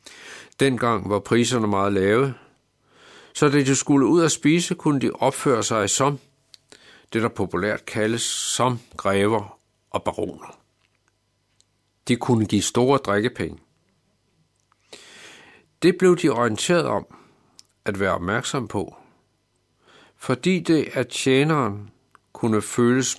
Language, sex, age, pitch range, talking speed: Danish, male, 60-79, 100-135 Hz, 120 wpm